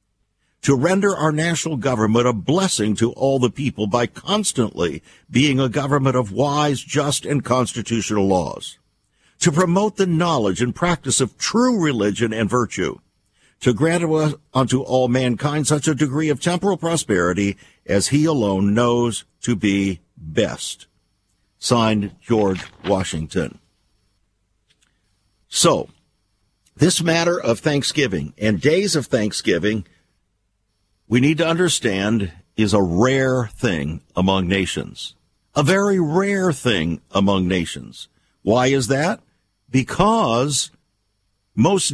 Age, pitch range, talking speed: 60-79, 100-150 Hz, 120 wpm